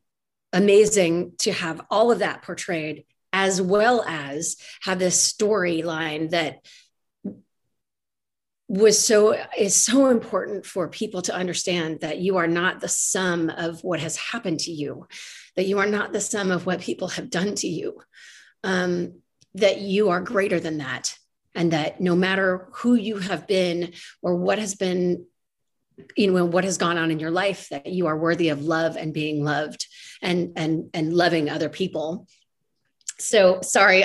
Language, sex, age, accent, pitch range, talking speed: English, female, 30-49, American, 160-195 Hz, 165 wpm